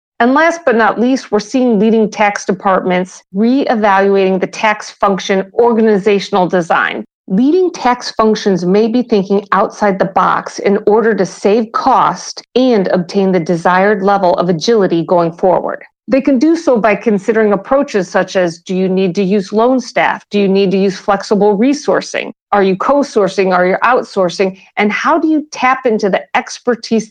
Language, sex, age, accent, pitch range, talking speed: English, female, 50-69, American, 195-235 Hz, 170 wpm